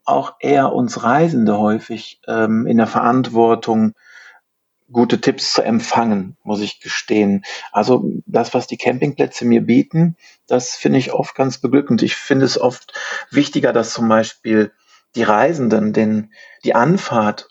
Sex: male